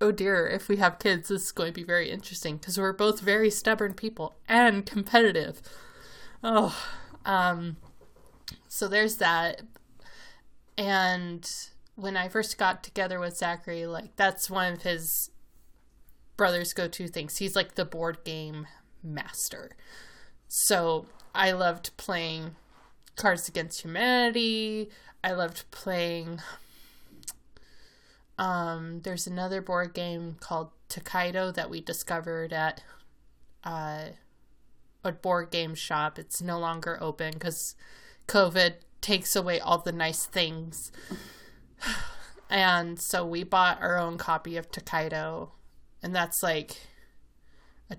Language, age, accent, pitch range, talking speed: English, 20-39, American, 165-195 Hz, 125 wpm